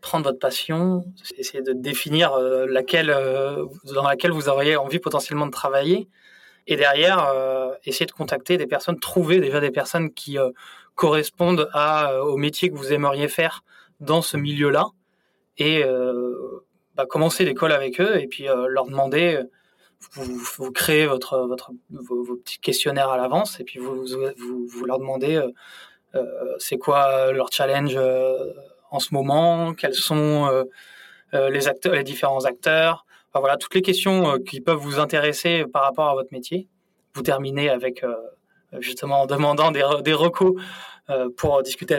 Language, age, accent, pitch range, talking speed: French, 20-39, French, 130-170 Hz, 165 wpm